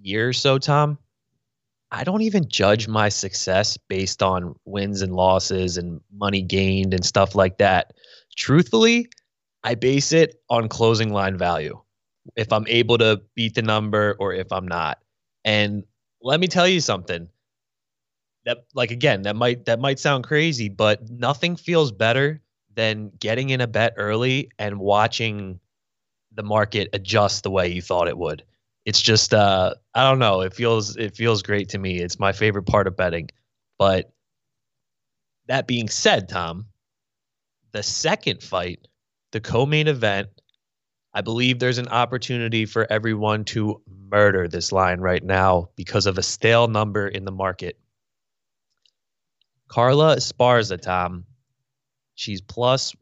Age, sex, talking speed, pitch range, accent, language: 20-39, male, 150 wpm, 95-125 Hz, American, English